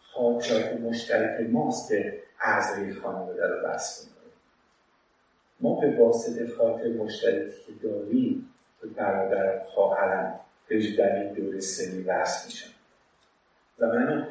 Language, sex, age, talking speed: Persian, male, 50-69, 115 wpm